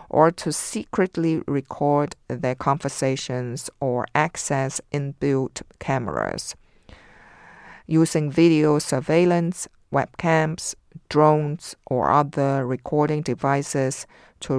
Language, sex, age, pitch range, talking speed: English, female, 50-69, 135-160 Hz, 80 wpm